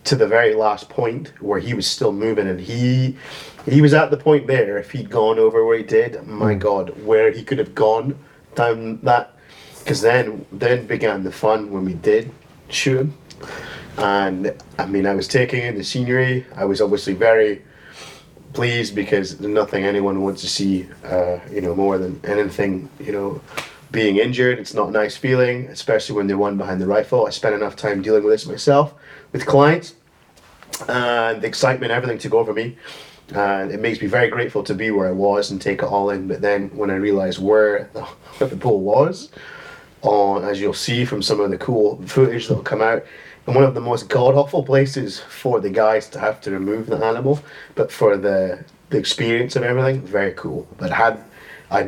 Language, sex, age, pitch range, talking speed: English, male, 30-49, 100-140 Hz, 200 wpm